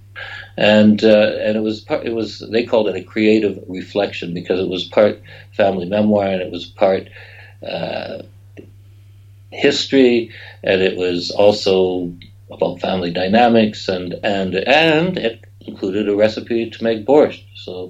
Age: 60-79